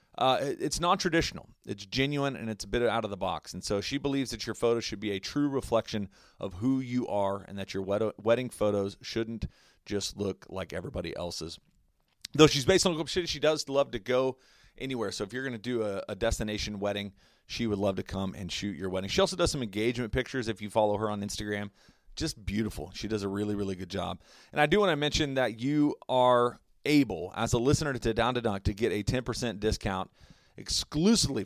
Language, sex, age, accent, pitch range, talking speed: English, male, 30-49, American, 95-125 Hz, 220 wpm